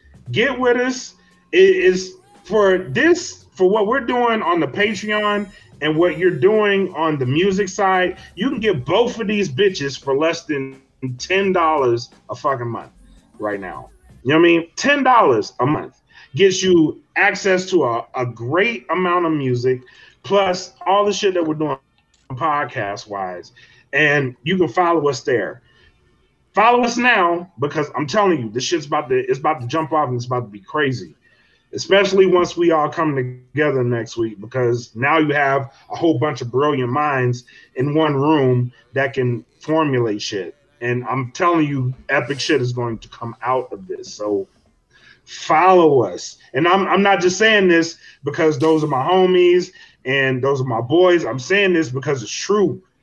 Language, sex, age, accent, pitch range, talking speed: English, male, 30-49, American, 130-190 Hz, 175 wpm